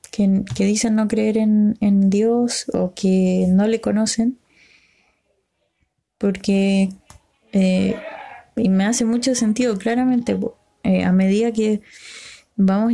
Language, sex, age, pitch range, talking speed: Spanish, female, 20-39, 195-235 Hz, 115 wpm